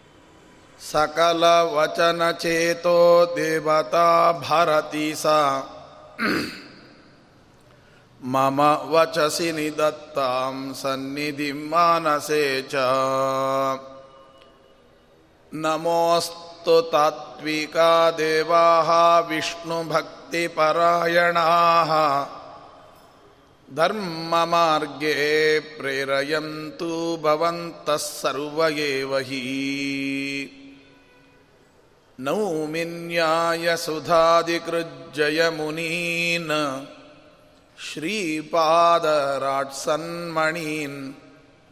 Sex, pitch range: male, 140-165 Hz